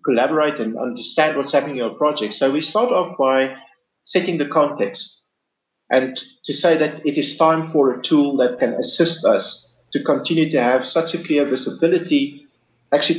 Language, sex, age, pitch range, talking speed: English, male, 50-69, 130-160 Hz, 175 wpm